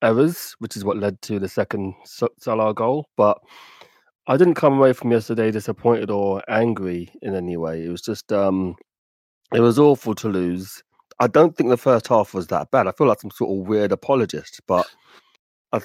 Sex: male